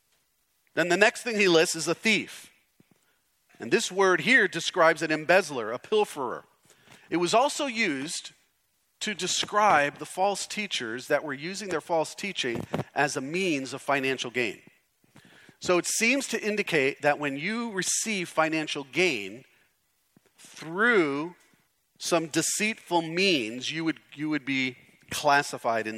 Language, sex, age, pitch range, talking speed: English, male, 40-59, 135-185 Hz, 140 wpm